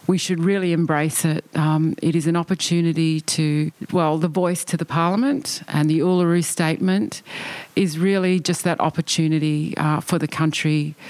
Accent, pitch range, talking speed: Australian, 155-180 Hz, 160 wpm